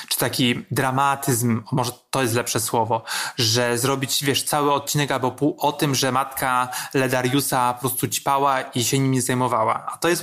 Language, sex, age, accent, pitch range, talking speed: Polish, male, 30-49, native, 130-150 Hz, 175 wpm